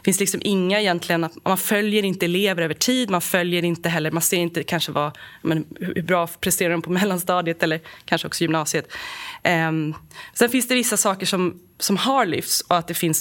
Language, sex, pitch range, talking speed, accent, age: Swedish, female, 165-205 Hz, 210 wpm, native, 20-39